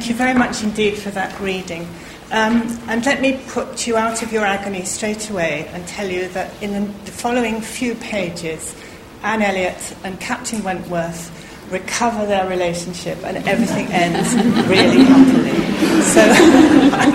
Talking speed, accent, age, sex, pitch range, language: 155 wpm, British, 40-59, female, 185-240 Hz, English